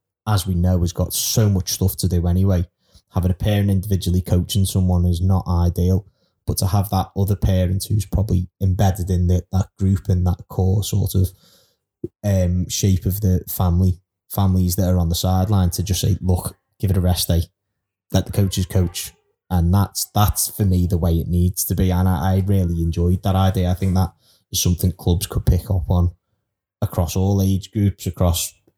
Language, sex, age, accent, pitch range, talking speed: English, male, 20-39, British, 90-95 Hz, 195 wpm